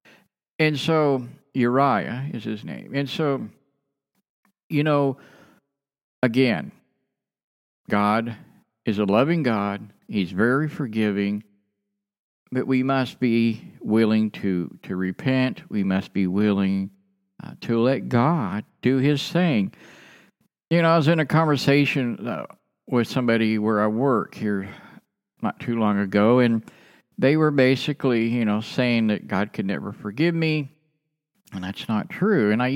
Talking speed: 135 wpm